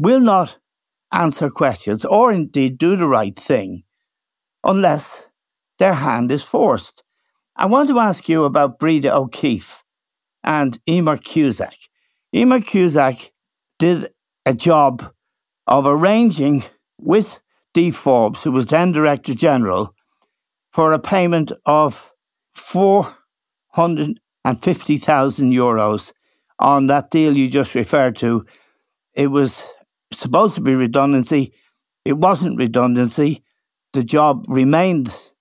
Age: 60-79